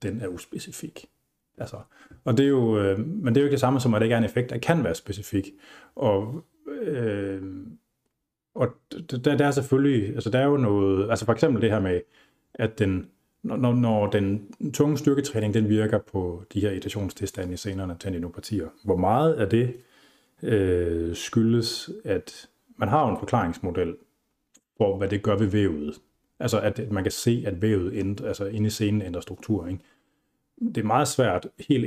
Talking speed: 190 wpm